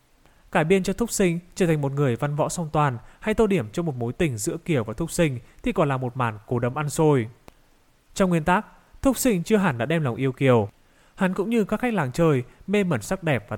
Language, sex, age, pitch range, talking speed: Vietnamese, male, 20-39, 130-185 Hz, 255 wpm